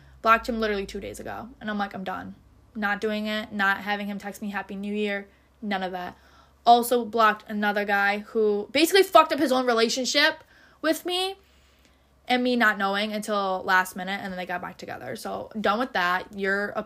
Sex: female